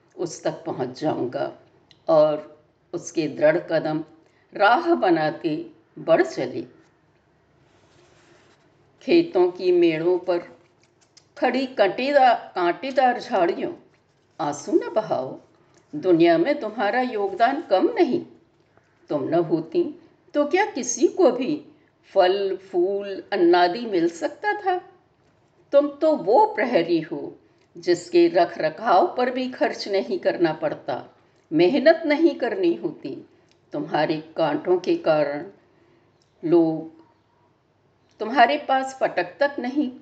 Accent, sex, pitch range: native, female, 215-340 Hz